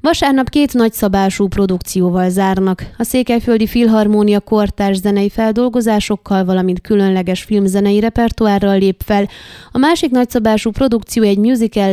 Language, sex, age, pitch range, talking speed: Hungarian, female, 20-39, 195-235 Hz, 115 wpm